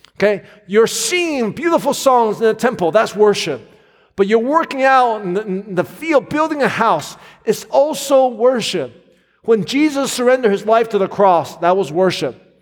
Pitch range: 175-255 Hz